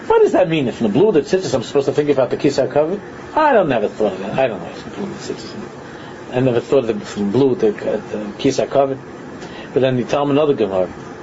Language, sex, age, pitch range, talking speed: English, male, 40-59, 115-150 Hz, 255 wpm